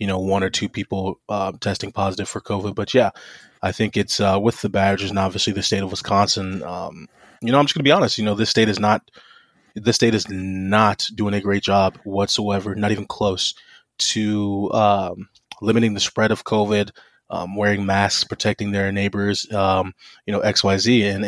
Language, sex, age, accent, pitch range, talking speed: English, male, 20-39, American, 100-110 Hz, 205 wpm